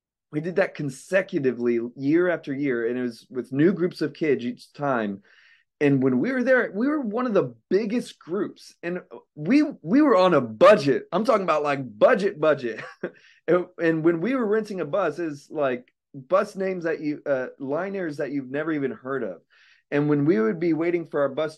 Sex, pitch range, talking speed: male, 145-205 Hz, 205 wpm